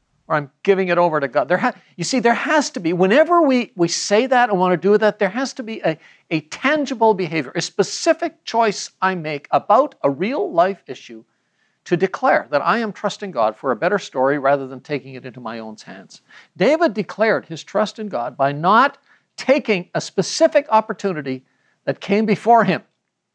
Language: English